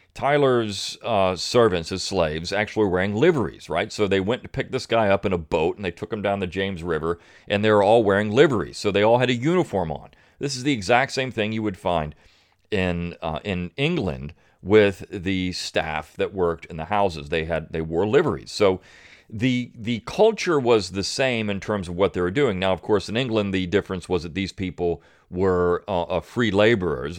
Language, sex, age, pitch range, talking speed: English, male, 40-59, 90-110 Hz, 215 wpm